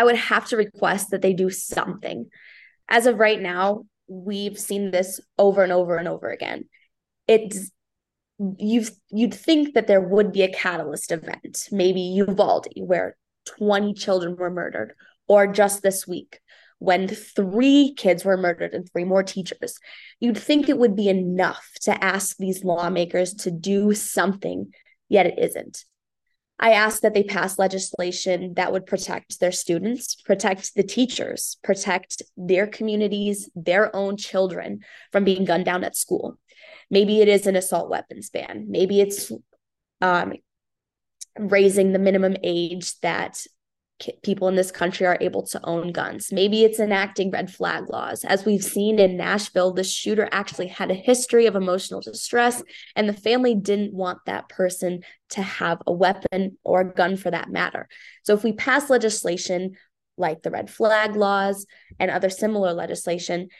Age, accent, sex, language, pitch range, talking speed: 20-39, American, female, English, 185-210 Hz, 160 wpm